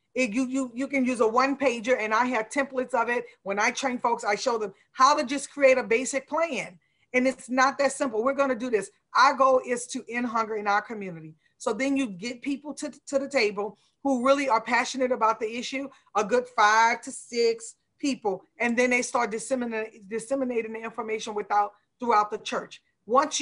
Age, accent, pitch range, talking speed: 40-59, American, 225-270 Hz, 215 wpm